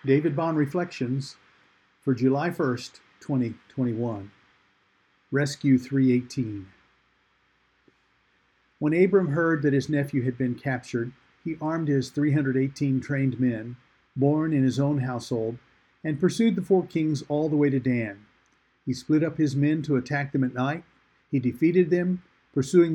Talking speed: 140 wpm